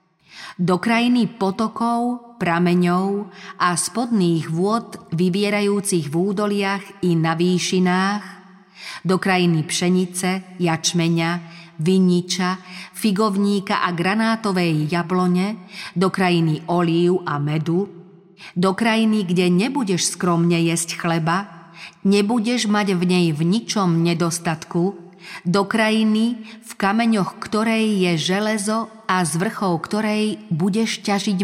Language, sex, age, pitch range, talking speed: Slovak, female, 40-59, 175-205 Hz, 105 wpm